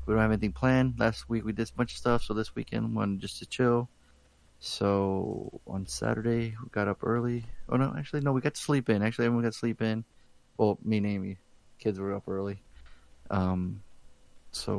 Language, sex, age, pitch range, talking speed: English, male, 30-49, 100-125 Hz, 210 wpm